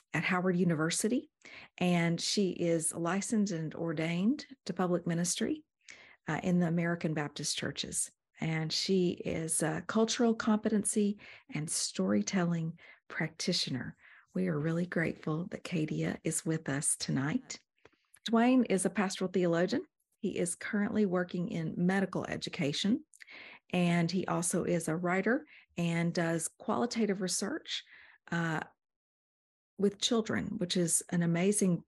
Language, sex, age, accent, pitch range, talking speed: English, female, 40-59, American, 165-200 Hz, 125 wpm